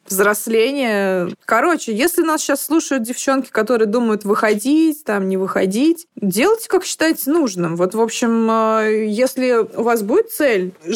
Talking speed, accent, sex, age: 135 wpm, native, female, 20-39